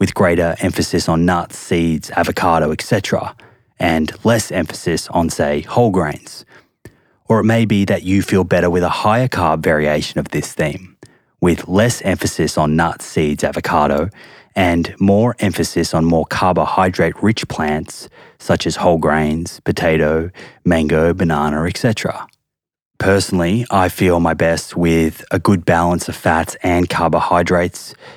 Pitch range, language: 80-100 Hz, English